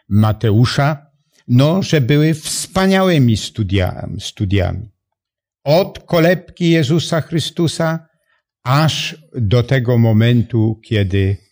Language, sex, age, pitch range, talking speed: Polish, male, 70-89, 105-155 Hz, 85 wpm